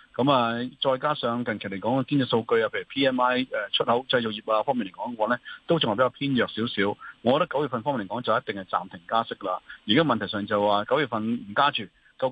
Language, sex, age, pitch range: Chinese, male, 30-49, 110-140 Hz